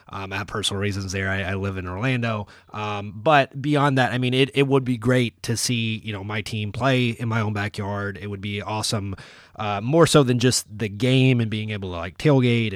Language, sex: English, male